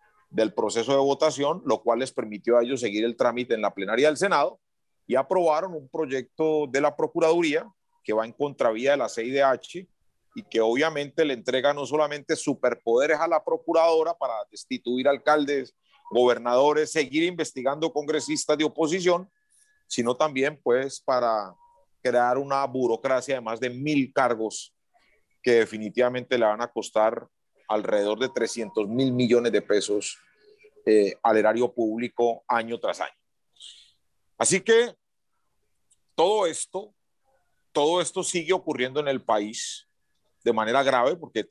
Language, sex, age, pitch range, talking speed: Spanish, male, 40-59, 125-180 Hz, 145 wpm